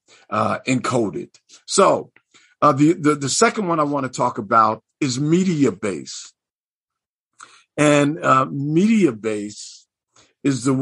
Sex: male